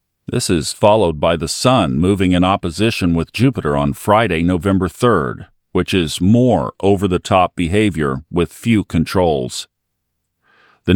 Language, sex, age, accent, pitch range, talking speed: English, male, 50-69, American, 85-105 Hz, 130 wpm